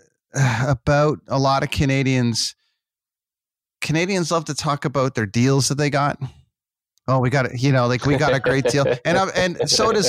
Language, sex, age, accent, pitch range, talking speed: English, male, 30-49, American, 115-150 Hz, 190 wpm